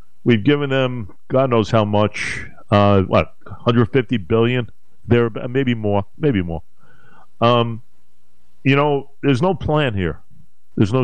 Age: 50-69